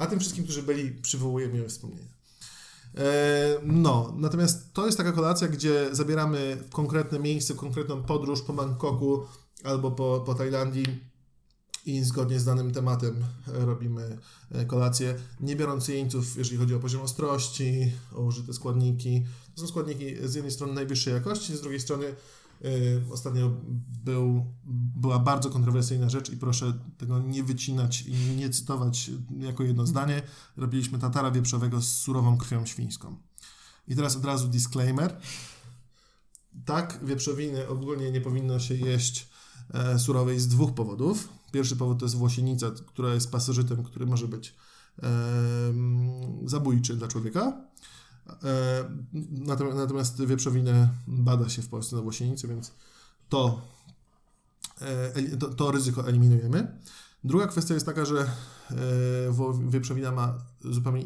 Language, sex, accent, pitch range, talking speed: Polish, male, native, 120-140 Hz, 135 wpm